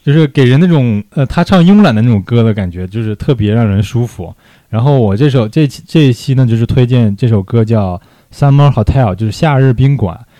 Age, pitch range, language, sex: 20-39, 105-130 Hz, Chinese, male